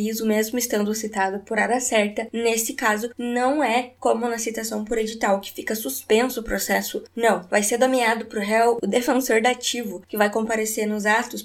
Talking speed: 185 wpm